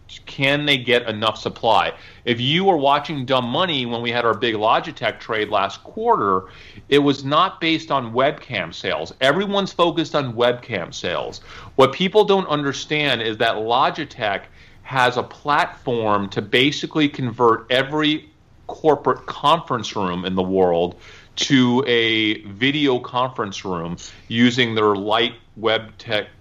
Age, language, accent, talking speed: 40-59, English, American, 140 wpm